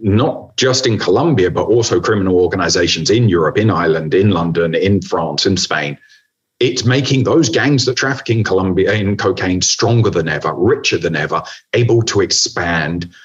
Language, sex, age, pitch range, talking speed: English, male, 40-59, 90-120 Hz, 160 wpm